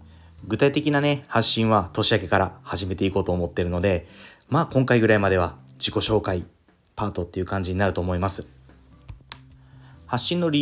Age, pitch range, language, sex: 30-49, 90-110 Hz, Japanese, male